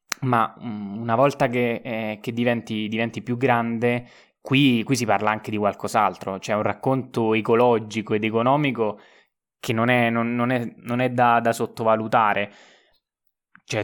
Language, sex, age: Italian, male, 20-39